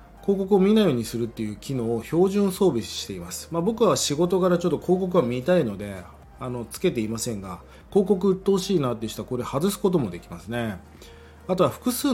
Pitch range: 115-185 Hz